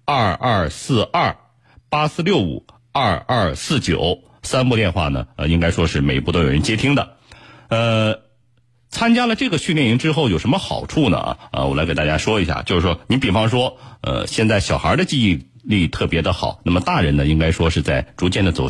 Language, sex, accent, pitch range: Chinese, male, native, 80-120 Hz